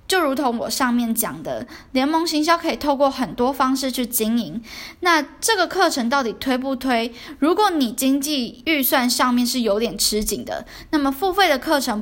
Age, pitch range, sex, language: 10-29, 225-290 Hz, female, Chinese